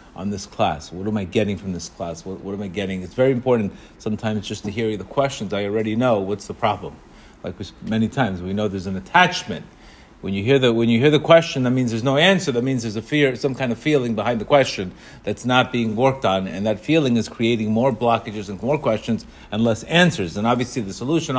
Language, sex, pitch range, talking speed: English, male, 105-135 Hz, 245 wpm